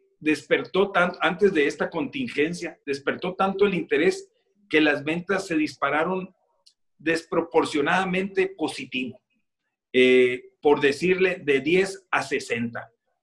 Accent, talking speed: Mexican, 110 wpm